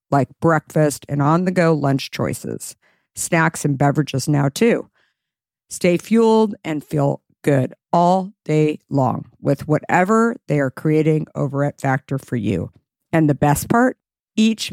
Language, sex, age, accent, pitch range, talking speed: English, female, 50-69, American, 140-175 Hz, 145 wpm